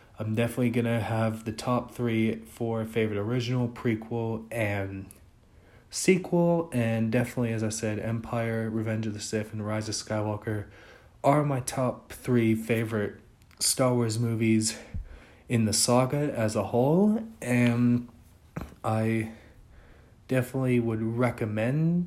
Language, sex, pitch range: English, male, 110-125 Hz